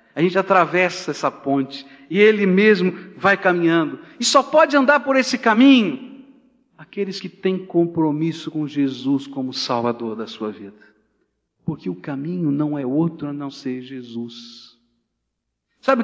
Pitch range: 120-190 Hz